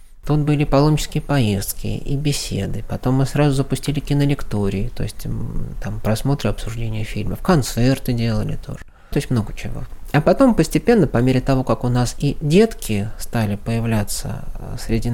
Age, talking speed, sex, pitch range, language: 20-39, 150 wpm, male, 110-145 Hz, Russian